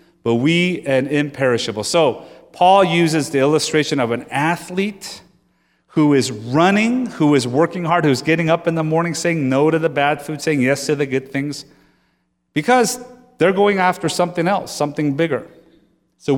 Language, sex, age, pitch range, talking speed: English, male, 30-49, 130-170 Hz, 170 wpm